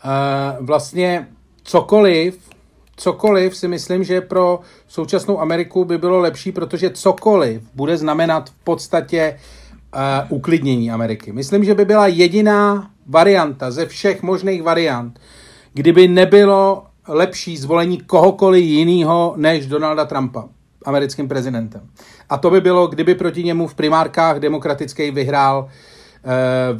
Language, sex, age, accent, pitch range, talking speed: Czech, male, 40-59, native, 135-175 Hz, 125 wpm